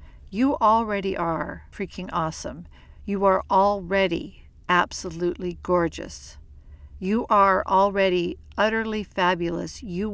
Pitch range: 175-195 Hz